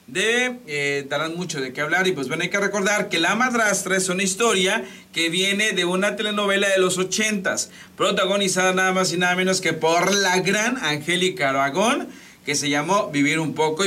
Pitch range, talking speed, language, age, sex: 170-220 Hz, 195 wpm, Spanish, 40-59, male